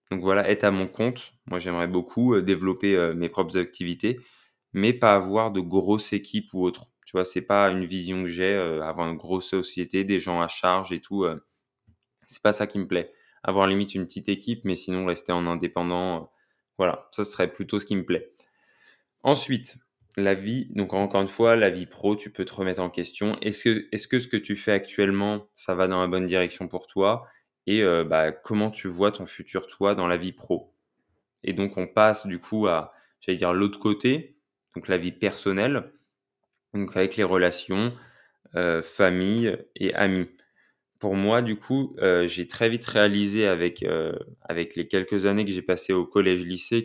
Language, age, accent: French, 20-39, French